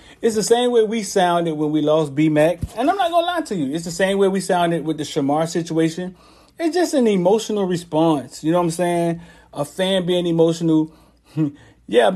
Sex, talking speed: male, 210 wpm